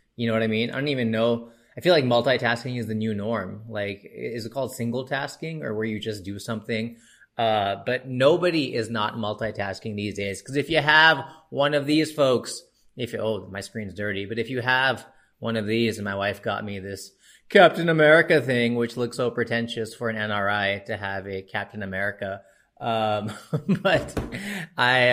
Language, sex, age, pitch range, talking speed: English, male, 30-49, 105-130 Hz, 195 wpm